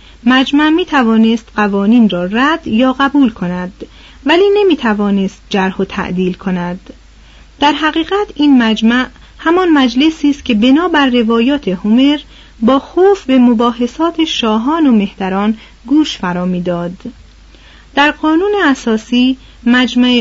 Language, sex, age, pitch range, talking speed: Persian, female, 30-49, 205-280 Hz, 120 wpm